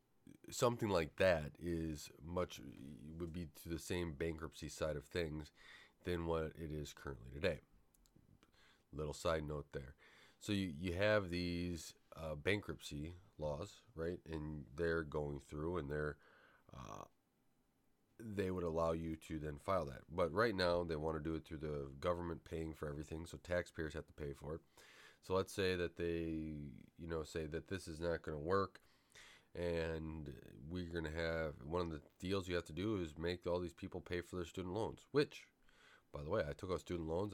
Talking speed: 185 wpm